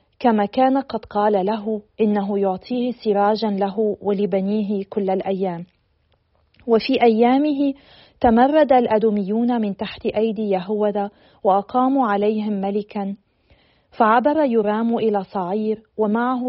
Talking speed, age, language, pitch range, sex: 100 wpm, 40-59, Arabic, 200-235 Hz, female